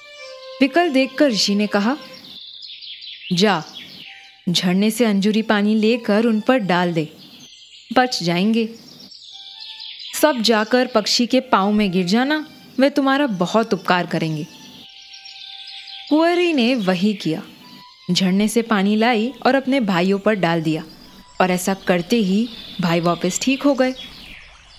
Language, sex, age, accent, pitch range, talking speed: Hindi, female, 20-39, native, 190-260 Hz, 130 wpm